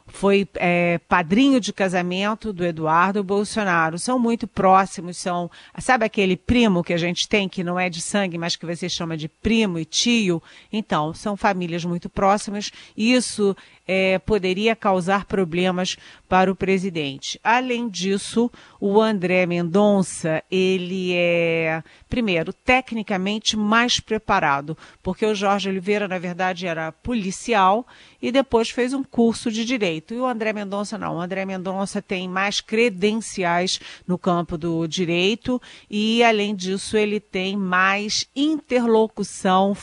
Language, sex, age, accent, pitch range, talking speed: Portuguese, female, 40-59, Brazilian, 175-215 Hz, 140 wpm